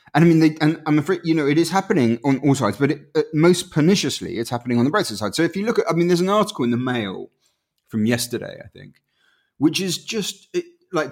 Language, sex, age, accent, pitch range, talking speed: English, male, 30-49, British, 115-160 Hz, 260 wpm